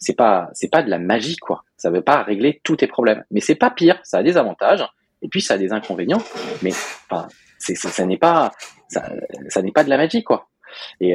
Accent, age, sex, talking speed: French, 20-39, male, 240 wpm